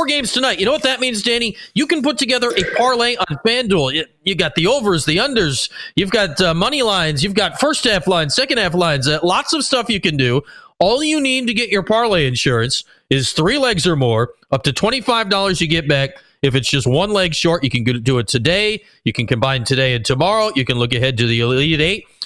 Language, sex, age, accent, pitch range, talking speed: English, male, 40-59, American, 135-200 Hz, 235 wpm